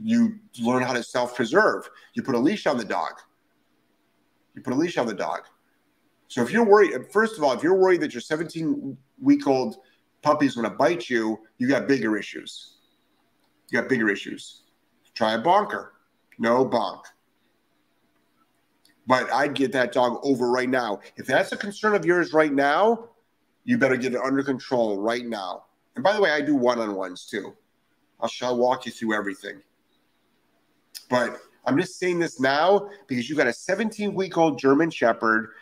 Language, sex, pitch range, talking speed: English, male, 120-180 Hz, 170 wpm